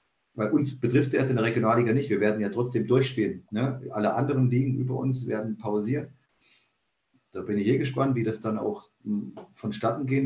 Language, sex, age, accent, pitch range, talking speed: German, male, 40-59, German, 105-130 Hz, 195 wpm